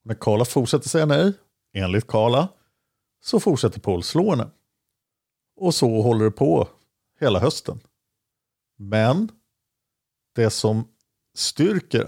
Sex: male